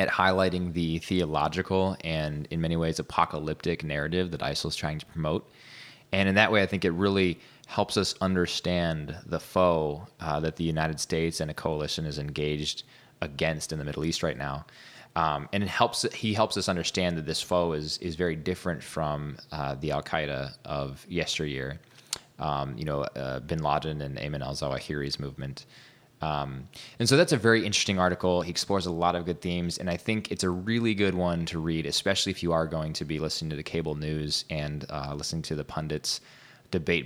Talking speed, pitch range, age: 200 wpm, 75-90 Hz, 20-39